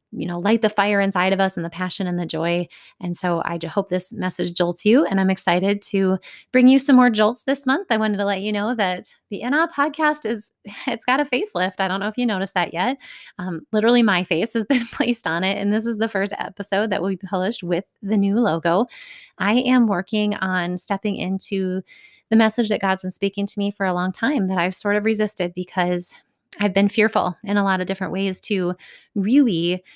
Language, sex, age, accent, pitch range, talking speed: English, female, 30-49, American, 180-220 Hz, 230 wpm